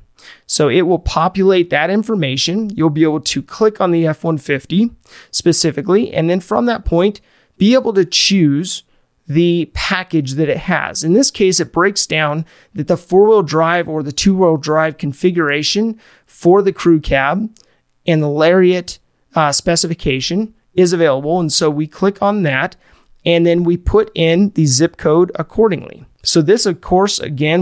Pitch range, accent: 155-185 Hz, American